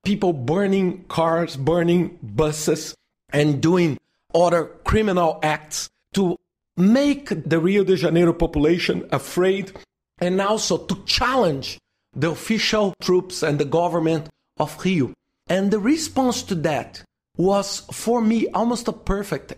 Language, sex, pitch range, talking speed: English, male, 155-205 Hz, 125 wpm